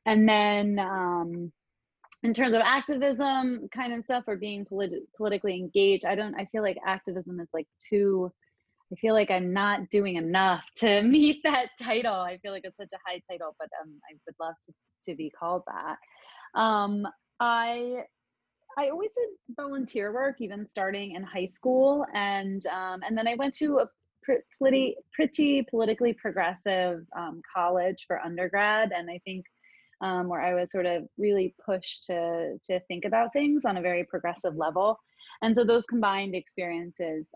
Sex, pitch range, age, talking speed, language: female, 175-225 Hz, 30-49, 175 wpm, English